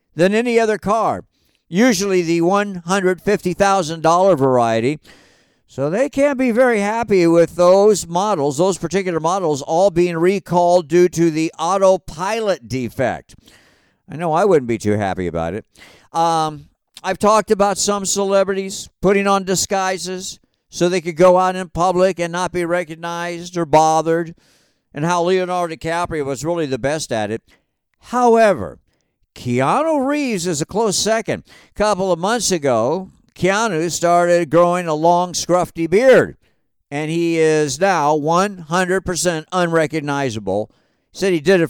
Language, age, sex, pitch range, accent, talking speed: English, 50-69, male, 160-195 Hz, American, 140 wpm